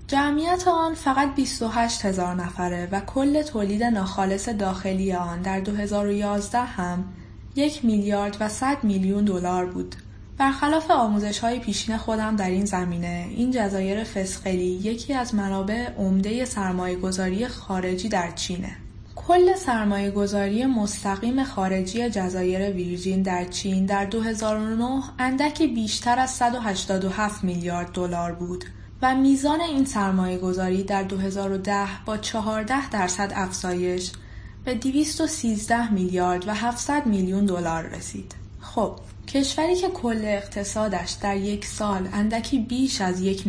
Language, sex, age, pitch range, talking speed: English, female, 10-29, 185-235 Hz, 125 wpm